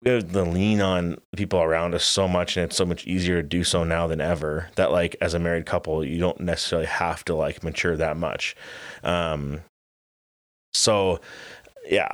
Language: English